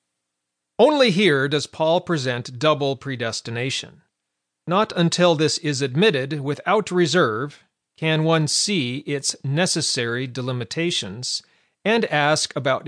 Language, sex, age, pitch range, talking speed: English, male, 40-59, 130-170 Hz, 105 wpm